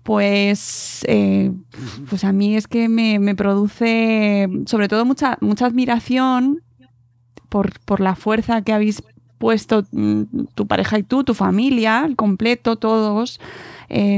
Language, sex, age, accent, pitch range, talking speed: Spanish, female, 20-39, Spanish, 195-230 Hz, 135 wpm